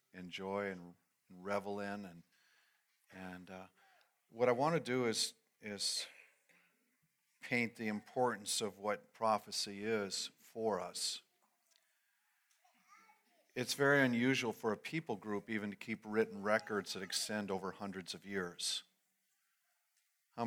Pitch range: 100-120 Hz